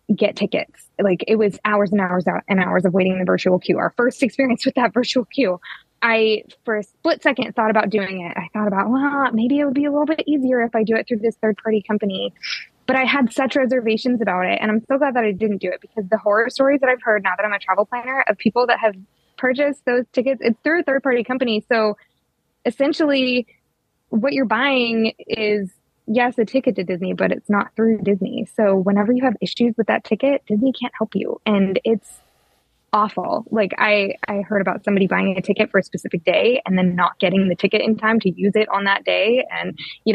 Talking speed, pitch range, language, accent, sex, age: 230 wpm, 200-255 Hz, English, American, female, 20-39